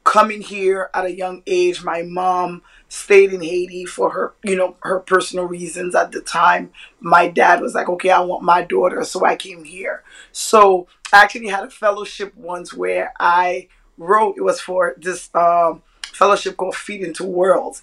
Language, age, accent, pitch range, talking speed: English, 20-39, American, 180-205 Hz, 180 wpm